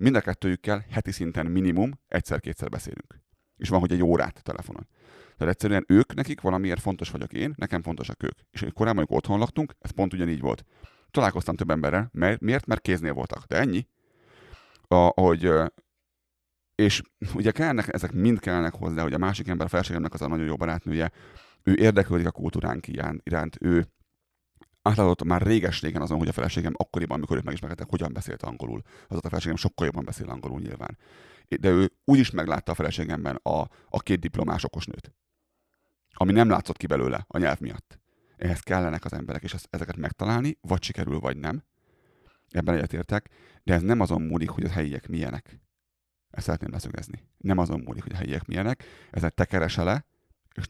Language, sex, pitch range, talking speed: Hungarian, male, 80-95 Hz, 170 wpm